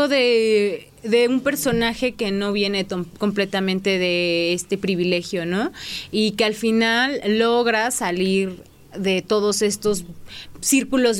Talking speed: 125 wpm